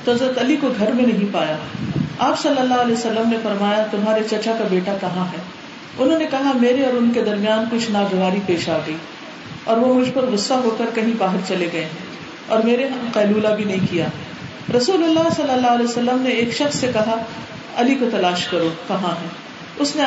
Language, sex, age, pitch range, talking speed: Urdu, female, 40-59, 200-255 Hz, 190 wpm